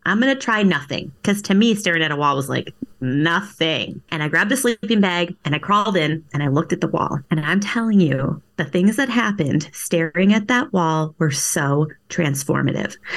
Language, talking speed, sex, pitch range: English, 210 wpm, female, 165-215 Hz